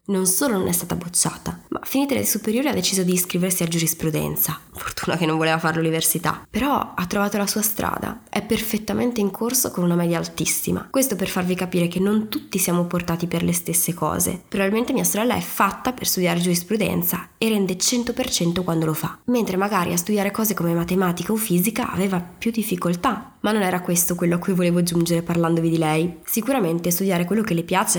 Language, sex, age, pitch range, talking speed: Italian, female, 20-39, 175-215 Hz, 200 wpm